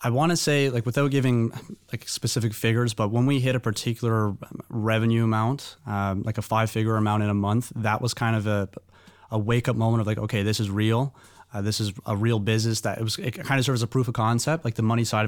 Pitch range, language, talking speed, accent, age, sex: 105-120 Hz, English, 250 wpm, American, 30-49, male